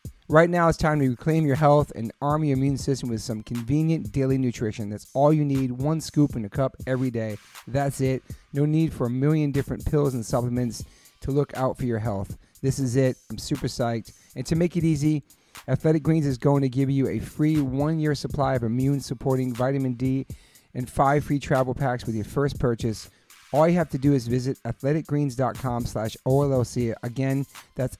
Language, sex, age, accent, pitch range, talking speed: English, male, 40-59, American, 120-145 Hz, 200 wpm